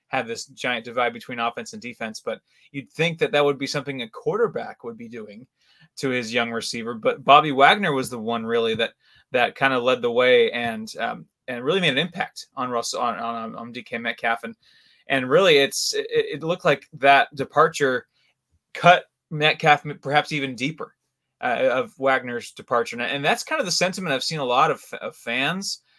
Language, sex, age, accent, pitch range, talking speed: English, male, 20-39, American, 125-175 Hz, 200 wpm